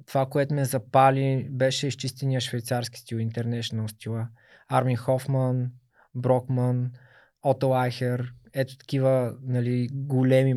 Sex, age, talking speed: male, 20-39, 110 wpm